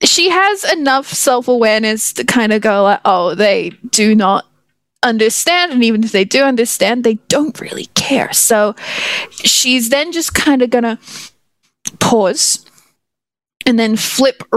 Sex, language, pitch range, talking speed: female, English, 210-255 Hz, 150 wpm